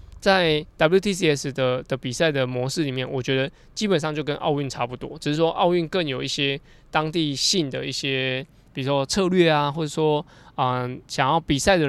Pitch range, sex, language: 135-160 Hz, male, Chinese